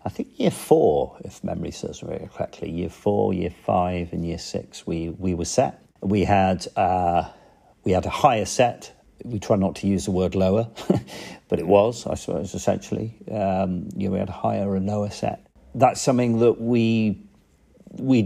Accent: British